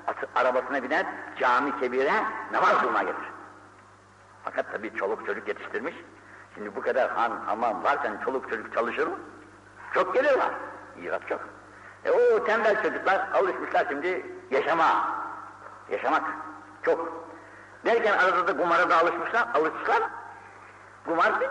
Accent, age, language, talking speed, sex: native, 60-79, Turkish, 115 wpm, male